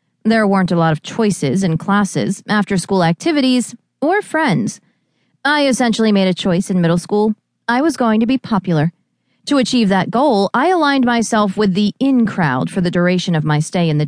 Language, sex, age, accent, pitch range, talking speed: English, female, 30-49, American, 180-255 Hz, 190 wpm